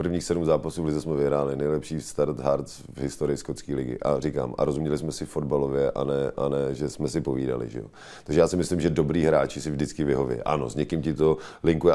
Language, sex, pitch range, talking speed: Czech, male, 75-90 Hz, 235 wpm